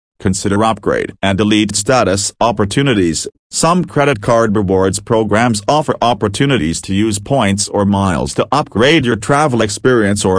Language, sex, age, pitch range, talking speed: English, male, 40-59, 95-120 Hz, 140 wpm